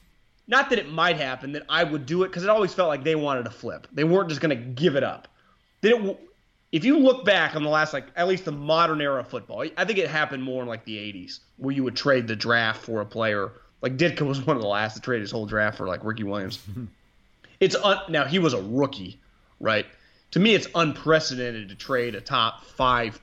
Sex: male